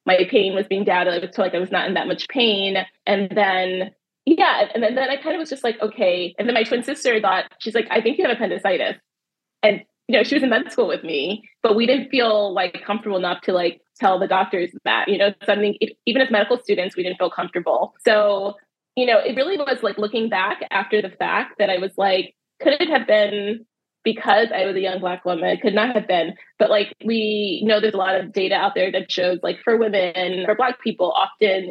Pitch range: 185-225 Hz